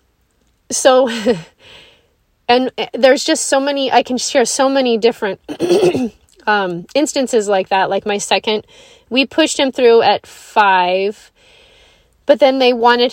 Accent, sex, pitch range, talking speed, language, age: American, female, 190-255 Hz, 135 wpm, English, 30-49